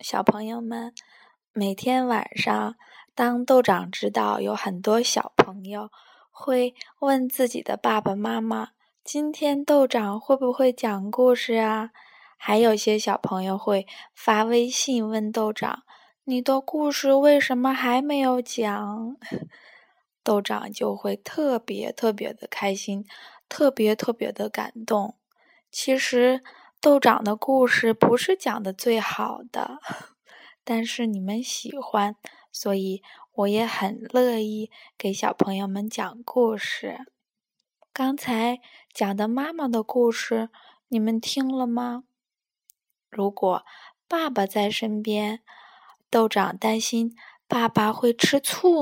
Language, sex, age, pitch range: Chinese, female, 20-39, 210-255 Hz